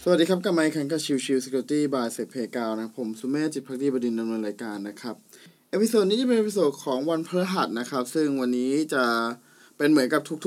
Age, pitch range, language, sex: 20-39, 130-175 Hz, Thai, male